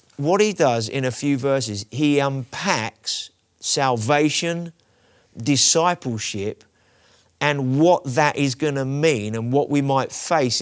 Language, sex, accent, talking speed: English, male, British, 125 wpm